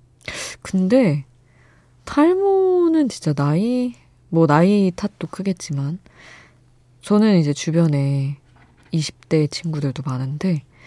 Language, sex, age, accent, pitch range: Korean, female, 20-39, native, 130-170 Hz